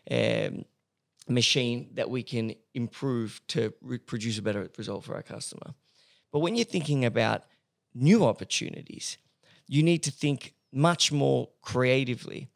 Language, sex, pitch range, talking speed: English, male, 115-145 Hz, 140 wpm